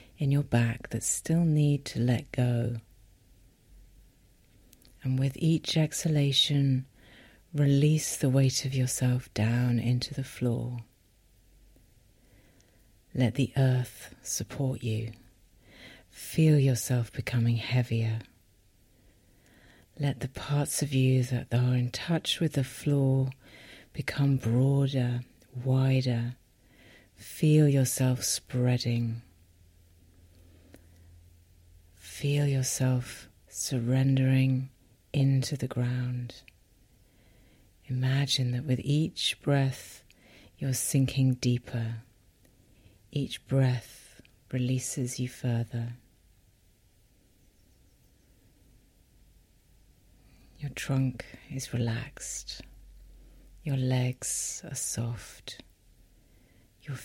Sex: female